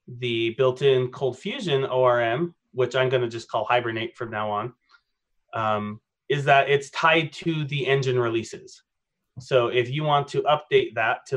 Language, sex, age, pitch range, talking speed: English, male, 30-49, 120-135 Hz, 165 wpm